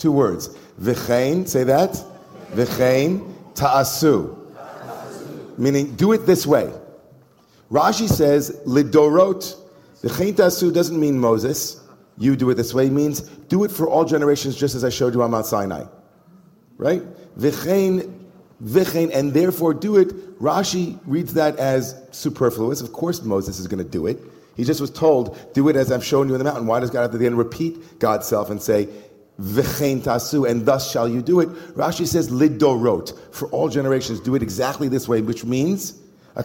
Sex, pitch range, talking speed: male, 120-160 Hz, 170 wpm